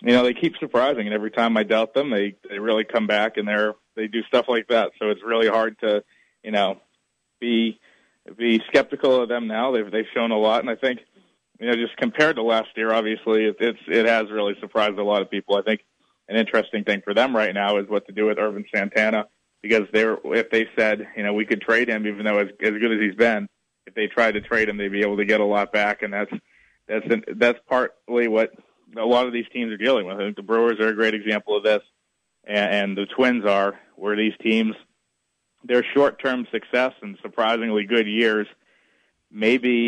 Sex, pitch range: male, 105-115 Hz